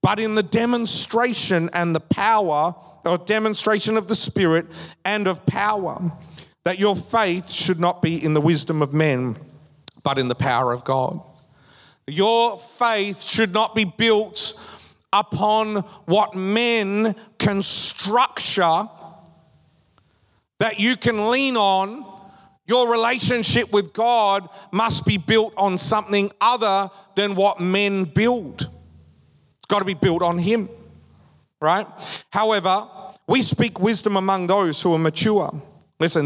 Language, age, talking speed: English, 40-59, 130 wpm